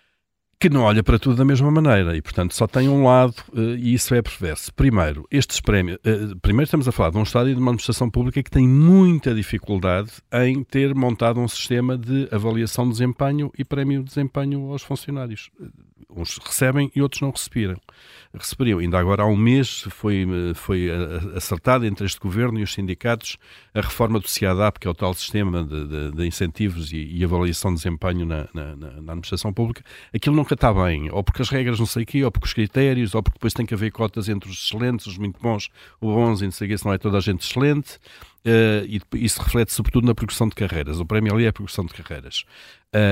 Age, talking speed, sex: 50-69, 215 wpm, male